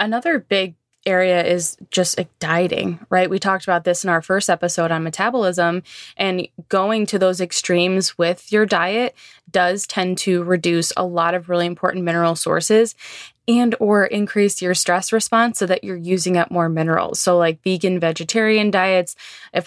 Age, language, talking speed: 20-39, English, 170 wpm